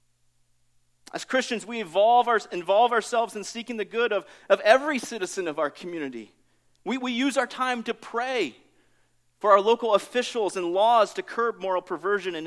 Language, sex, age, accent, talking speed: English, male, 40-59, American, 170 wpm